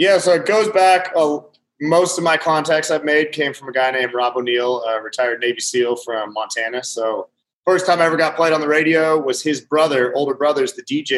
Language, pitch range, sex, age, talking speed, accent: English, 120-150 Hz, male, 30-49, 225 wpm, American